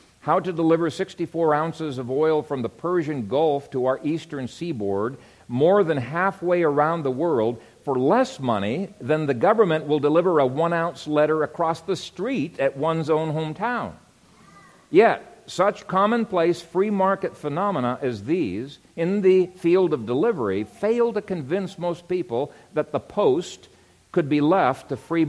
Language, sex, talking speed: English, male, 155 wpm